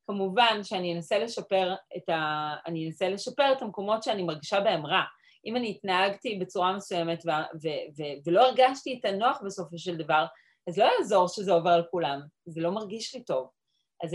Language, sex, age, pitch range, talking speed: Hebrew, female, 30-49, 170-220 Hz, 175 wpm